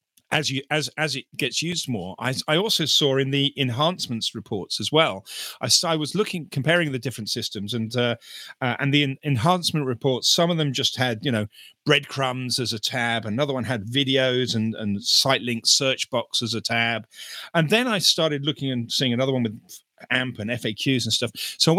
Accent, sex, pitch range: British, male, 115-155 Hz